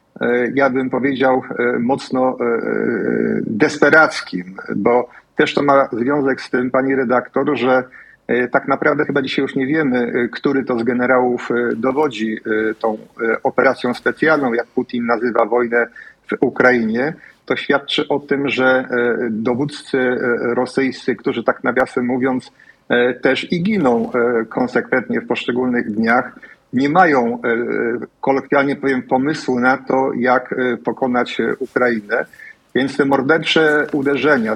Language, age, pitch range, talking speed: Polish, 50-69, 120-135 Hz, 120 wpm